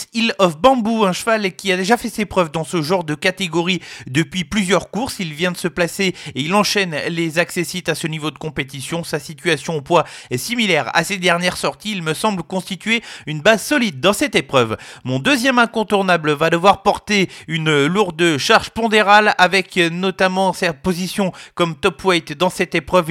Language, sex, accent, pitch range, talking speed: French, male, French, 170-200 Hz, 190 wpm